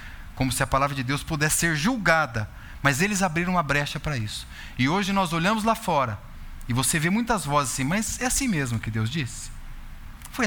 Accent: Brazilian